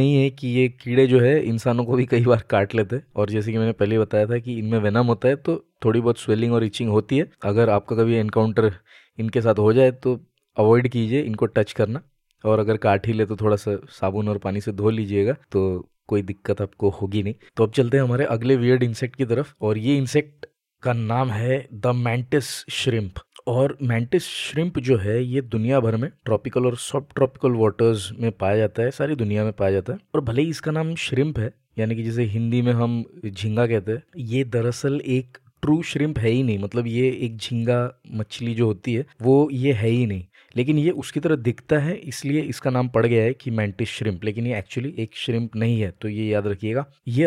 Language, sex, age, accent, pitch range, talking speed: Hindi, male, 20-39, native, 110-135 Hz, 225 wpm